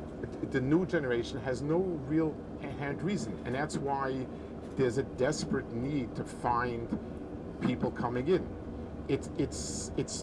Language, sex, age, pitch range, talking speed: English, male, 50-69, 100-145 Hz, 135 wpm